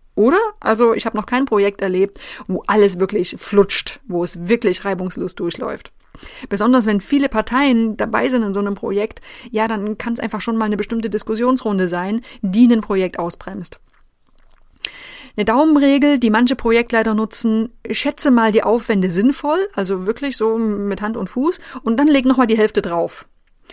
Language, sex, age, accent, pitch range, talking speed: German, female, 30-49, German, 200-255 Hz, 170 wpm